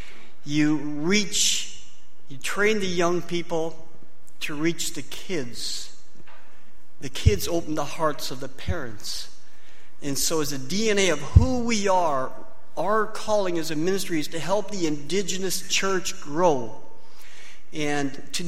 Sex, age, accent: male, 50-69, American